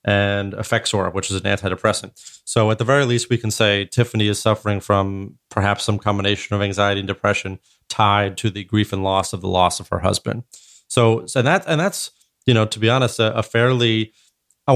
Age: 30-49